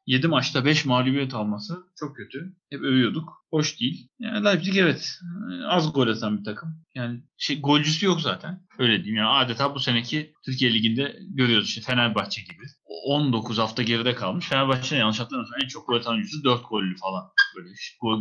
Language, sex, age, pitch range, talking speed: Turkish, male, 30-49, 125-175 Hz, 180 wpm